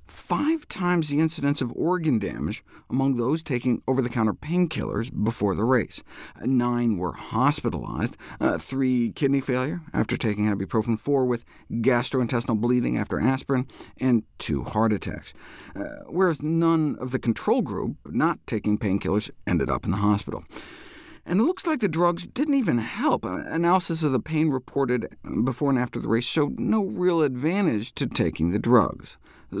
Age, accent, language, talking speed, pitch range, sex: 50-69, American, English, 155 wpm, 110-160 Hz, male